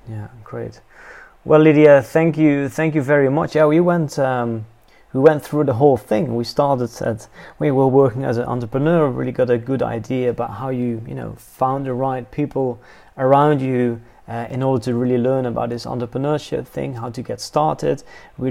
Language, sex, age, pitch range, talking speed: English, male, 30-49, 120-140 Hz, 195 wpm